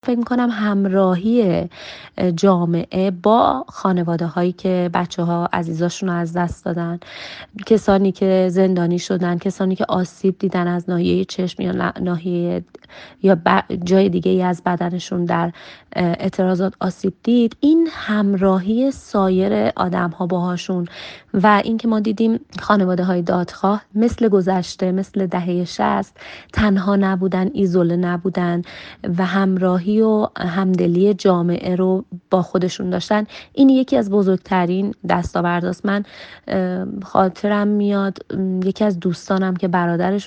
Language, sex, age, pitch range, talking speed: Persian, female, 30-49, 180-210 Hz, 125 wpm